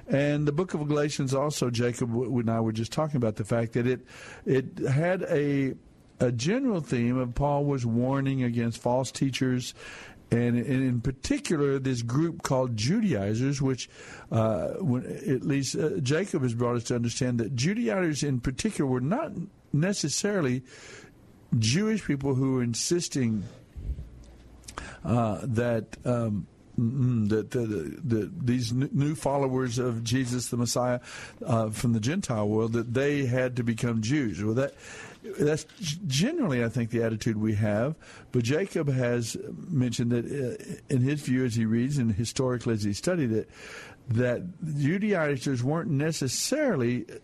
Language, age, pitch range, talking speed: English, 60-79, 120-145 Hz, 150 wpm